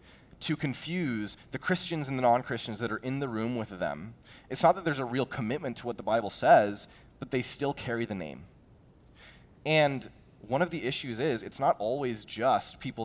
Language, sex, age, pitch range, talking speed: English, male, 20-39, 120-180 Hz, 200 wpm